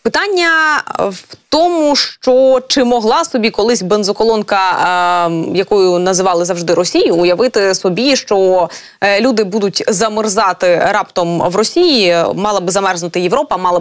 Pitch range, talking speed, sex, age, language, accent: 200-285 Hz, 120 wpm, female, 20-39, Ukrainian, native